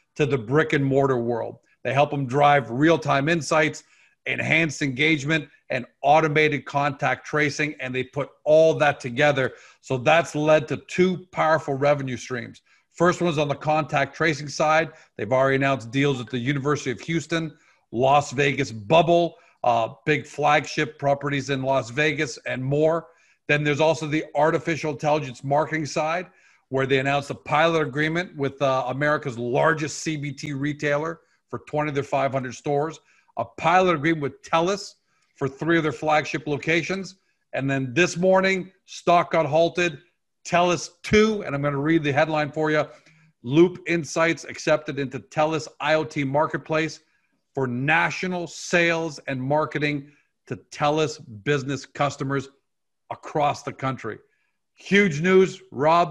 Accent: American